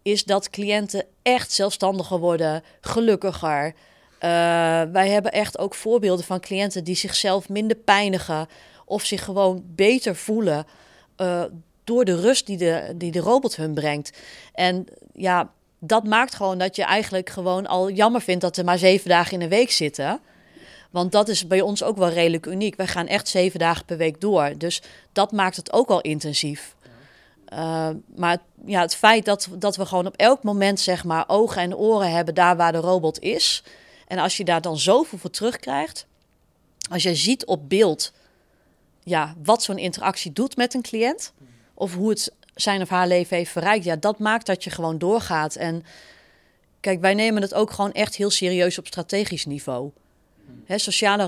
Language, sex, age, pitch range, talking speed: Dutch, female, 30-49, 170-205 Hz, 185 wpm